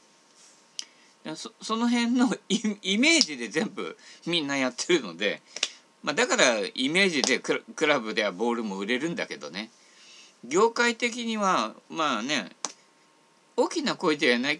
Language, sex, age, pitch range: Japanese, male, 50-69, 160-235 Hz